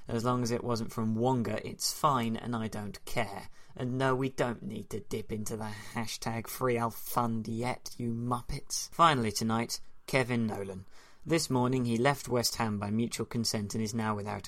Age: 20-39